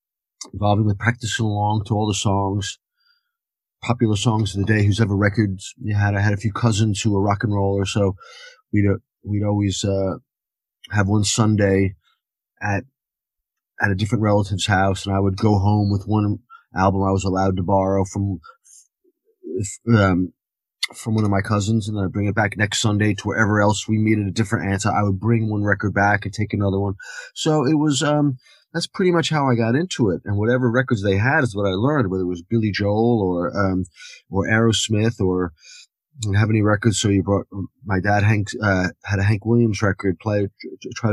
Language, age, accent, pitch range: English, 20-39, American, 100-120 Hz